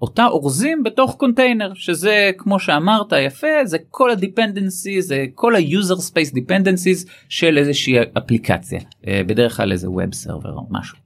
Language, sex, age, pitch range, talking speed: Hebrew, male, 30-49, 110-185 Hz, 140 wpm